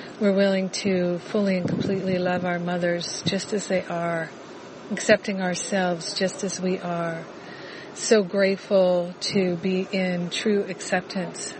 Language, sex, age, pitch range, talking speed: English, female, 50-69, 180-200 Hz, 135 wpm